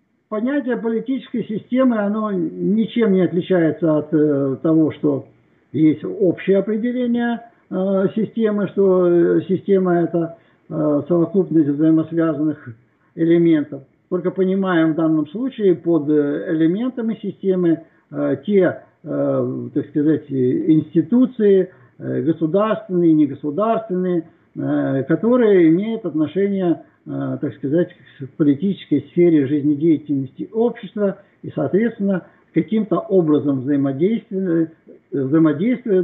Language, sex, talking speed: Russian, male, 90 wpm